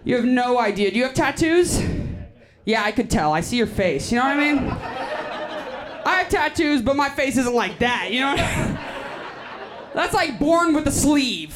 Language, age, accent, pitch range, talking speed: English, 20-39, American, 230-320 Hz, 195 wpm